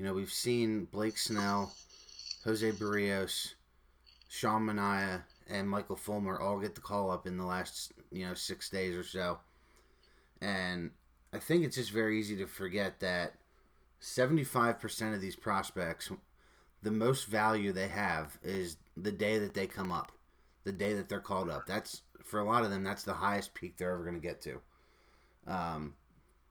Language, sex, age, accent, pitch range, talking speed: English, male, 30-49, American, 90-105 Hz, 170 wpm